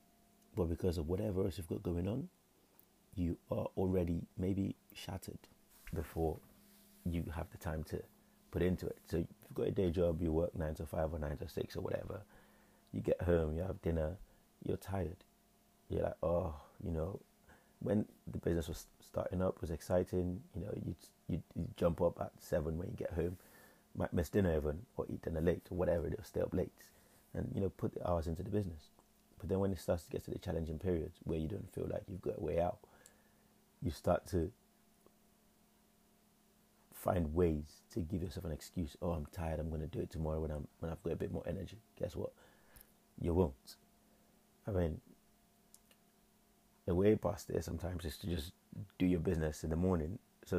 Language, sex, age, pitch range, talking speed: English, male, 30-49, 80-95 Hz, 195 wpm